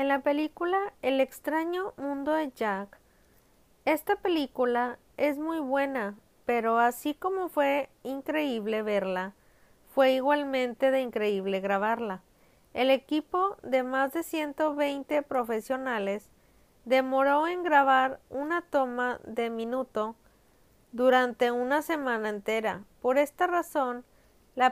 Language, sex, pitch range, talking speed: Spanish, female, 220-285 Hz, 110 wpm